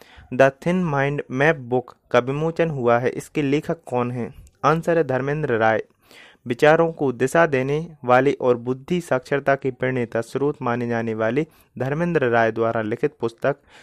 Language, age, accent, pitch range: Hindi, 30-49, native, 125-155 Hz